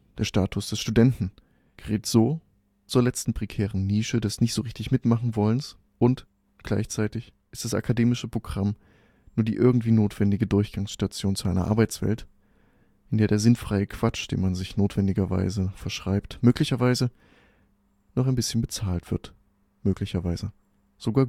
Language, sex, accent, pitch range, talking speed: German, male, German, 100-115 Hz, 125 wpm